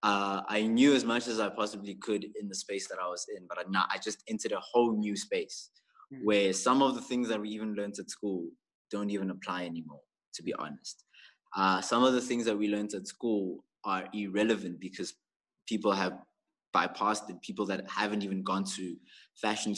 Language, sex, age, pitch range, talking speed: English, male, 20-39, 95-110 Hz, 205 wpm